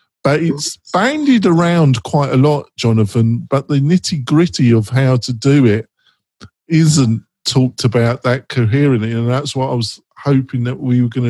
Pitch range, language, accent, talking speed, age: 120-145 Hz, English, British, 170 wpm, 50-69